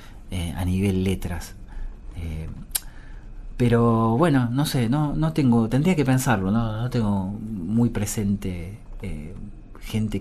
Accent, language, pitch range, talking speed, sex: Argentinian, Spanish, 100-125 Hz, 130 wpm, male